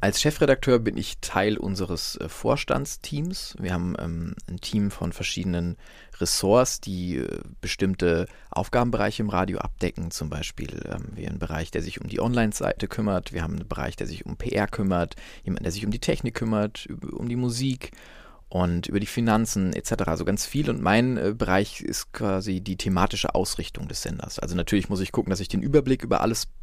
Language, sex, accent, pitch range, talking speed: German, male, German, 85-105 Hz, 185 wpm